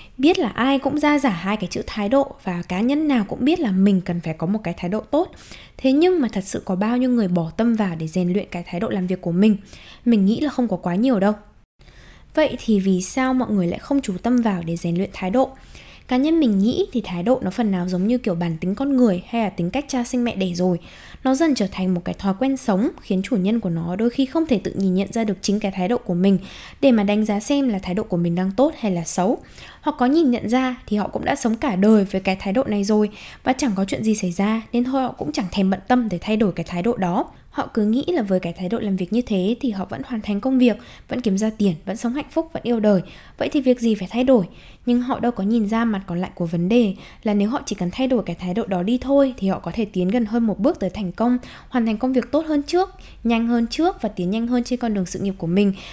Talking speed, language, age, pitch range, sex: 300 wpm, Vietnamese, 10-29, 190-255 Hz, female